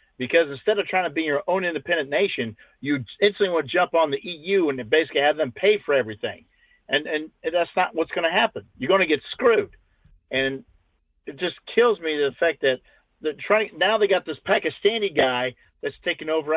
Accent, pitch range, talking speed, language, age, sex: American, 140-205 Hz, 205 wpm, English, 50-69, male